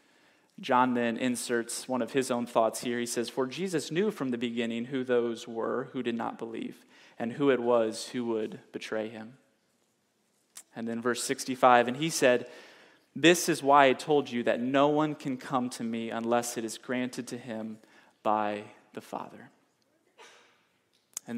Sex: male